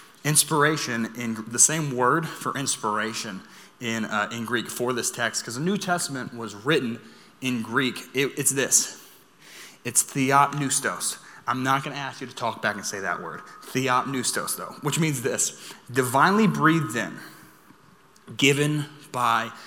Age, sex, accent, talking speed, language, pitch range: 20-39, male, American, 155 wpm, English, 115-145 Hz